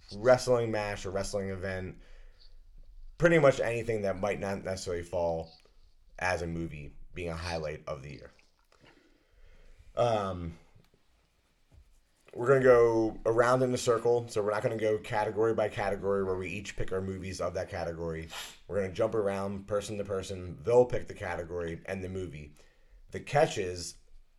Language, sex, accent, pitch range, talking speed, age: English, male, American, 85-110 Hz, 165 wpm, 30-49